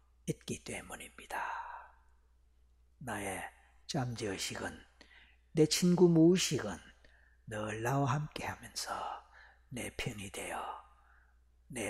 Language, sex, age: Korean, male, 50-69